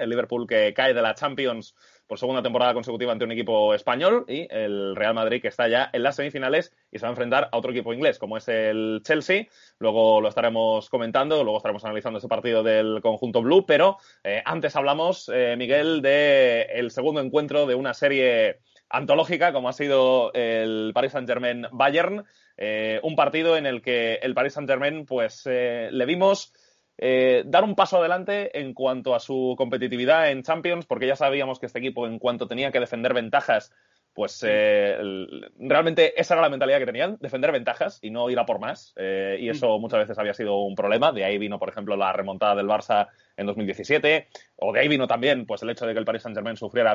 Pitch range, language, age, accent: 110-160 Hz, Spanish, 20-39, Spanish